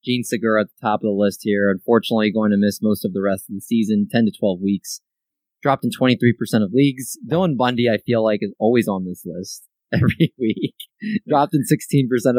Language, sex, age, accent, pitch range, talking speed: English, male, 30-49, American, 105-135 Hz, 215 wpm